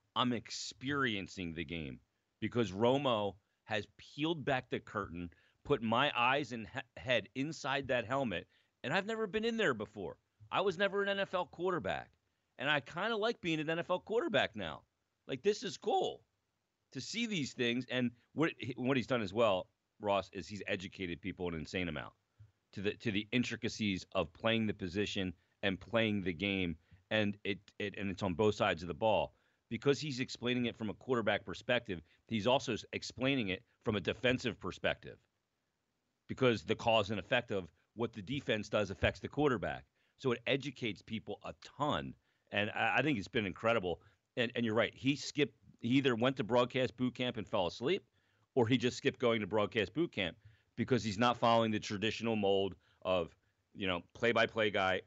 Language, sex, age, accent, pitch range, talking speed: English, male, 40-59, American, 100-130 Hz, 180 wpm